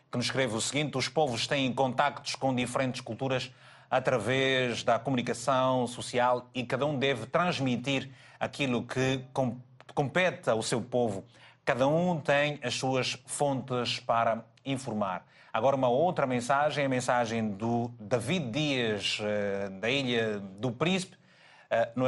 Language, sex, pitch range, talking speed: Portuguese, male, 120-155 Hz, 135 wpm